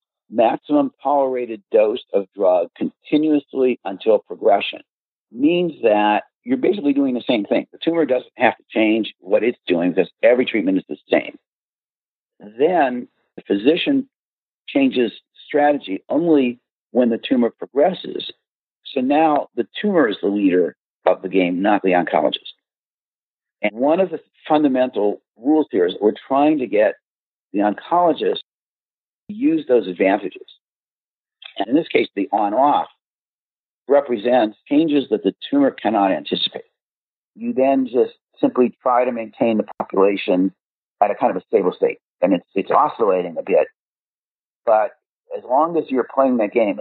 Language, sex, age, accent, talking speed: English, male, 50-69, American, 145 wpm